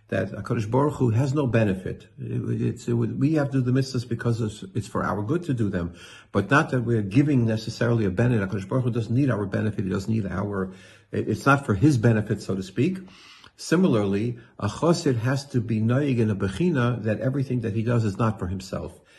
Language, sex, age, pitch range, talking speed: English, male, 60-79, 105-130 Hz, 215 wpm